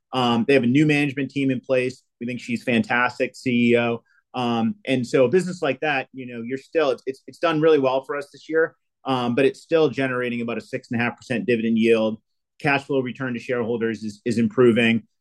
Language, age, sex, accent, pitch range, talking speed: English, 30-49, male, American, 115-140 Hz, 225 wpm